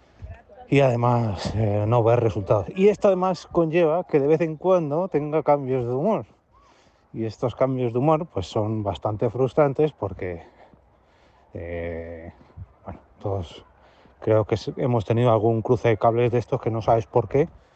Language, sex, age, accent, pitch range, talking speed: Spanish, male, 30-49, Spanish, 110-130 Hz, 160 wpm